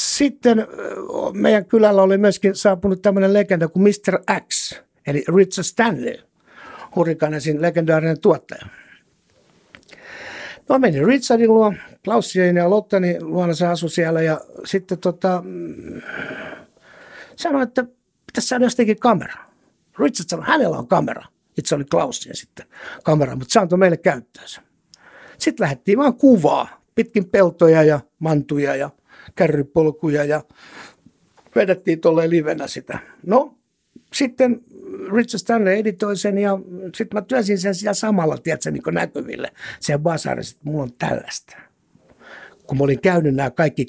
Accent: native